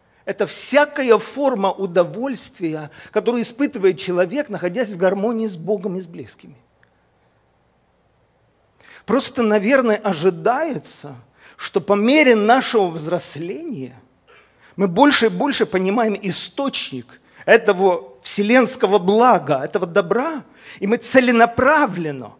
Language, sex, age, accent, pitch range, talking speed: Russian, male, 40-59, native, 170-225 Hz, 100 wpm